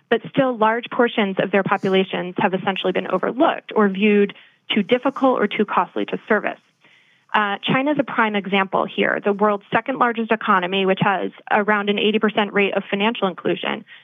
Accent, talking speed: American, 175 wpm